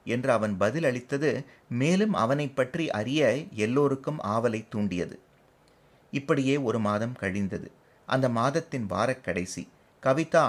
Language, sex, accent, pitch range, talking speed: Tamil, male, native, 110-145 Hz, 110 wpm